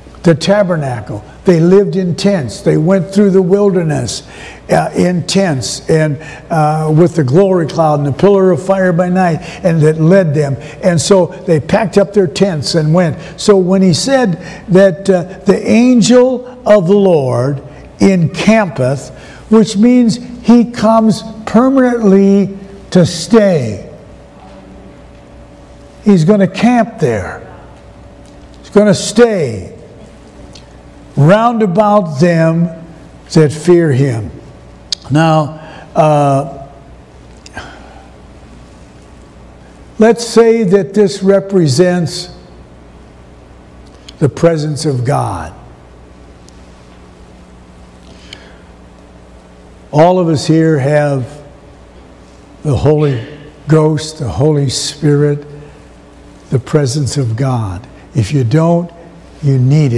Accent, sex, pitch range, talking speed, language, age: American, male, 130-195 Hz, 105 wpm, English, 60-79